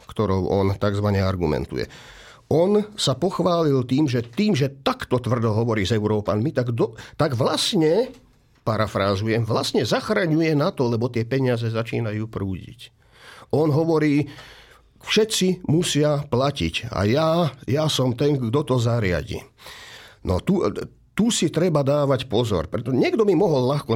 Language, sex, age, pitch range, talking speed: Slovak, male, 50-69, 100-140 Hz, 135 wpm